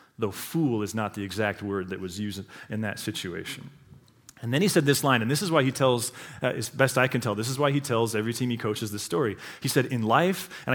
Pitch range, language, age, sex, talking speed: 115-145 Hz, English, 30-49, male, 260 wpm